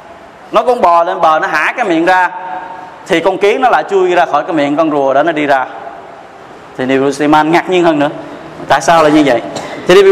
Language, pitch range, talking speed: Vietnamese, 155-200 Hz, 235 wpm